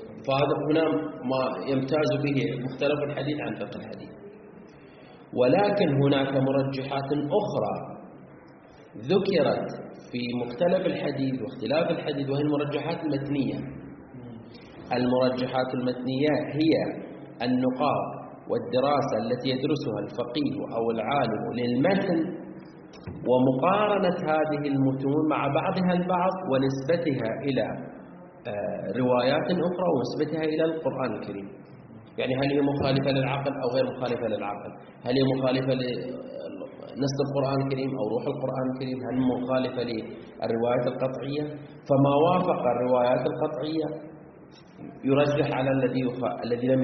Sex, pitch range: male, 125-150 Hz